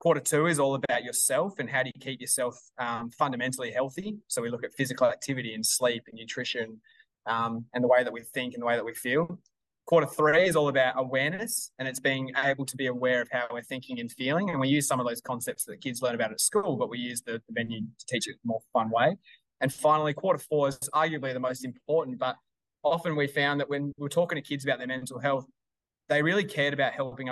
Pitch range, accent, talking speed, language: 125-150 Hz, Australian, 245 wpm, English